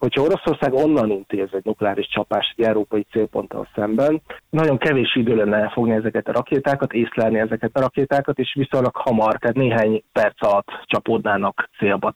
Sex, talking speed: male, 155 wpm